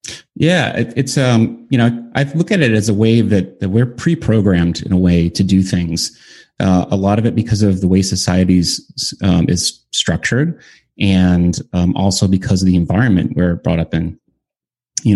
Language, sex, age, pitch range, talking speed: English, male, 30-49, 90-110 Hz, 190 wpm